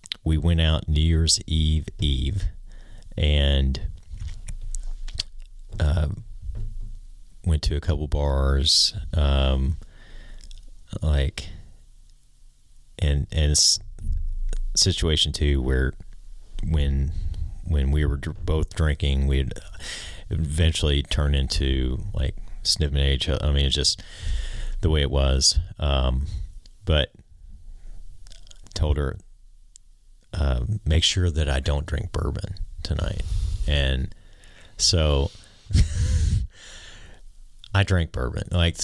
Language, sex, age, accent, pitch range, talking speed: English, male, 30-49, American, 75-95 Hz, 95 wpm